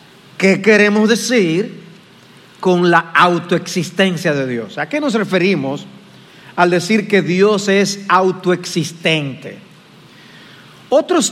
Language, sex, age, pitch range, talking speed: Spanish, male, 40-59, 165-205 Hz, 100 wpm